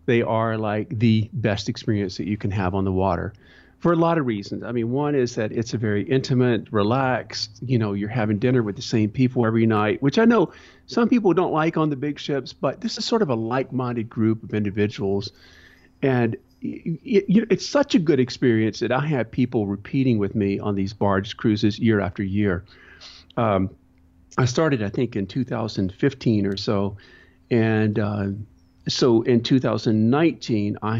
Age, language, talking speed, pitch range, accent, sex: 40-59, English, 185 wpm, 100-125 Hz, American, male